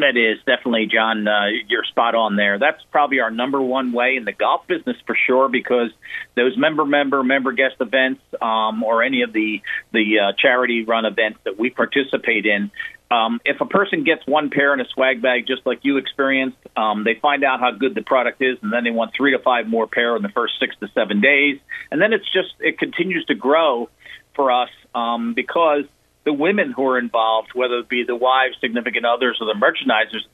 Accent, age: American, 50-69